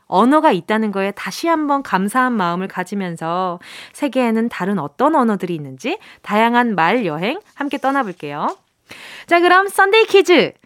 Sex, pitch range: female, 210-345 Hz